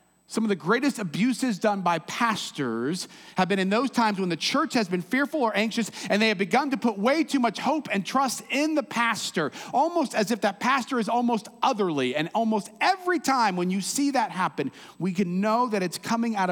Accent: American